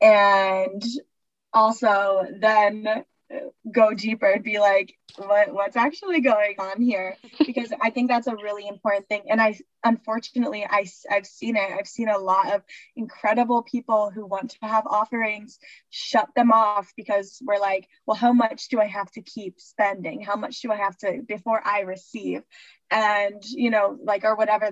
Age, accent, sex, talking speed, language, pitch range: 20-39, American, female, 170 wpm, English, 200-245 Hz